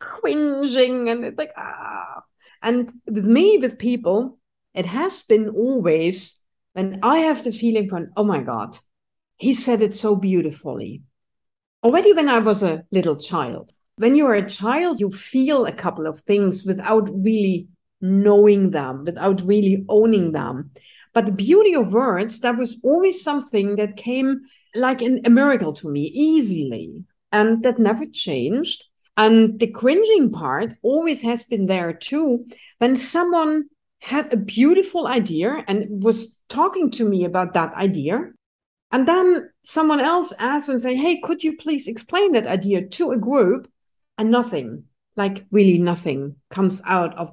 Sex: female